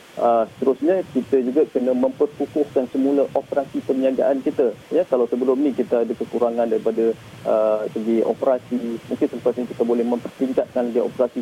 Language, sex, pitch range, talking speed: Malay, male, 120-140 Hz, 160 wpm